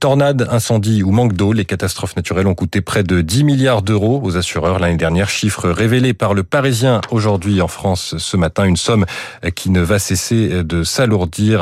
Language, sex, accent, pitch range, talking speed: French, male, French, 90-120 Hz, 190 wpm